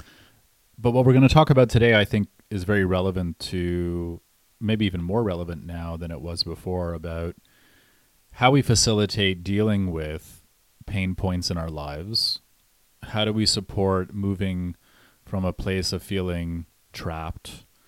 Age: 30-49